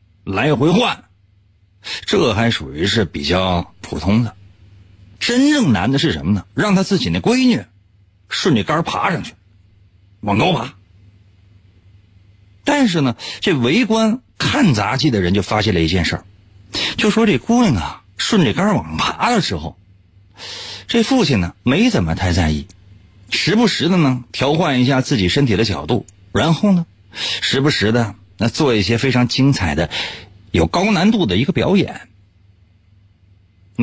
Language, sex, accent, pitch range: Chinese, male, native, 95-160 Hz